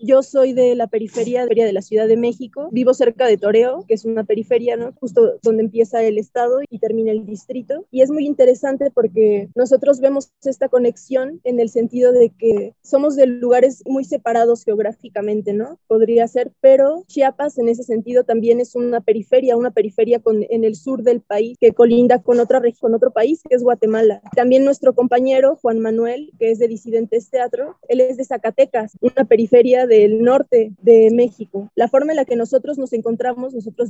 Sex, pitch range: female, 230-265 Hz